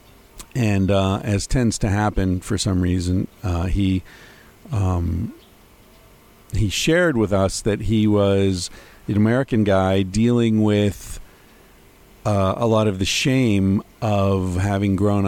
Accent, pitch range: American, 90-110 Hz